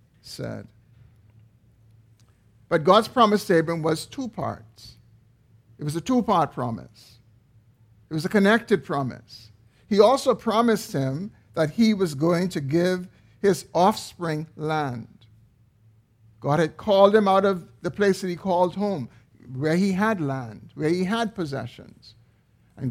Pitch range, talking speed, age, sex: 120-170 Hz, 140 wpm, 50-69, male